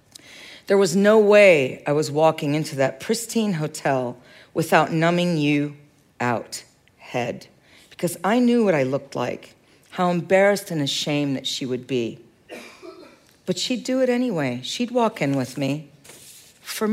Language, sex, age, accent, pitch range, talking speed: English, female, 50-69, American, 140-195 Hz, 150 wpm